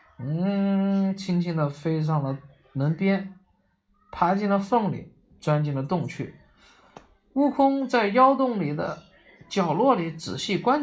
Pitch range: 150-220 Hz